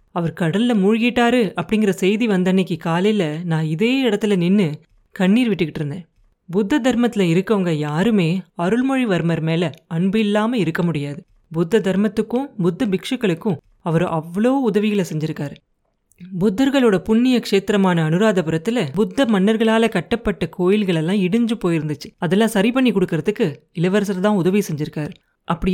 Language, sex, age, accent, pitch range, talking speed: Tamil, female, 30-49, native, 170-220 Hz, 120 wpm